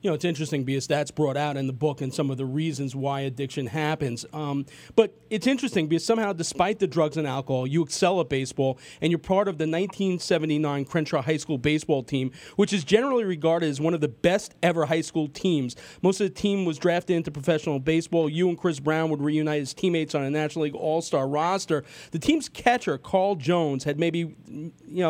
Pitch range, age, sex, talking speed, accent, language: 150-190 Hz, 40-59, male, 215 wpm, American, English